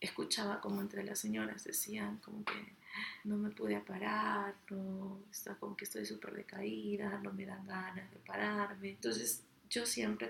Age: 30-49